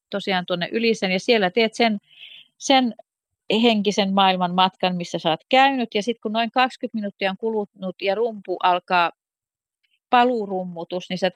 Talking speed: 150 wpm